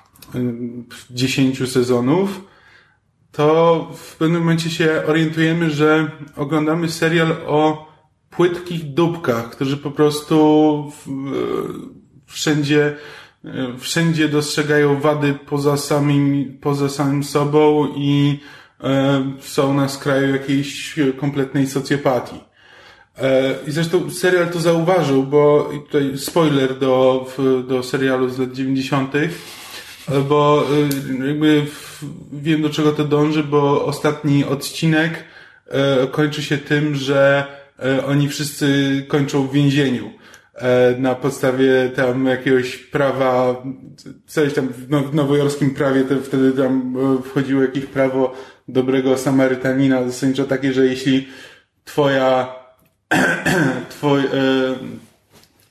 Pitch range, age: 135-150 Hz, 20-39